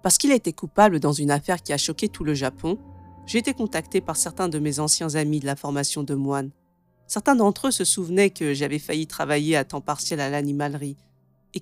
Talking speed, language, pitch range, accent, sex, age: 220 wpm, French, 140-200 Hz, French, female, 40-59